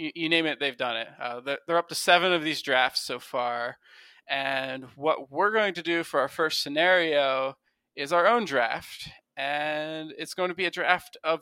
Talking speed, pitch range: 200 wpm, 135-165 Hz